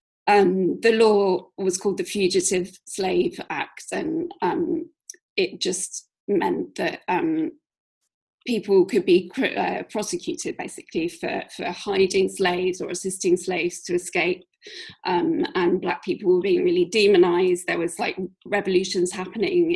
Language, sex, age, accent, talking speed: English, female, 20-39, British, 135 wpm